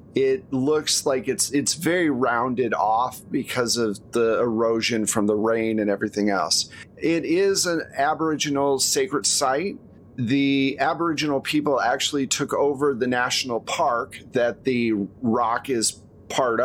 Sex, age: male, 40-59